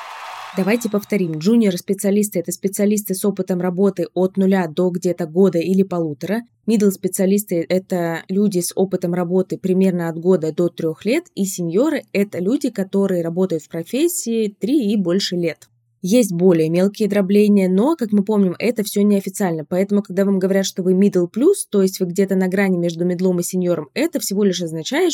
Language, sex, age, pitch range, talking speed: Russian, female, 20-39, 175-205 Hz, 170 wpm